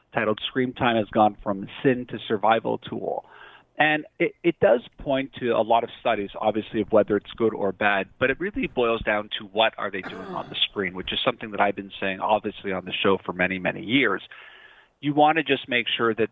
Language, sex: English, male